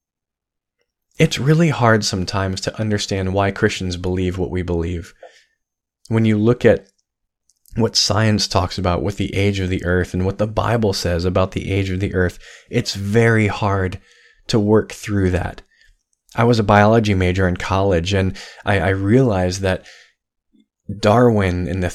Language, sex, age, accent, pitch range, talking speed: English, male, 20-39, American, 95-115 Hz, 160 wpm